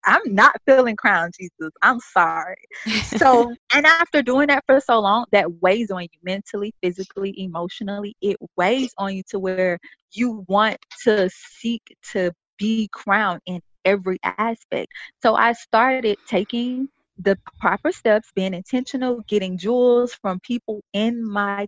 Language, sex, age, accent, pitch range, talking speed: English, female, 20-39, American, 190-240 Hz, 145 wpm